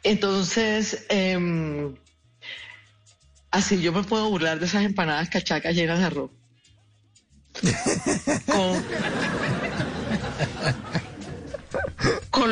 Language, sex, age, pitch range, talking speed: Spanish, female, 40-59, 160-200 Hz, 75 wpm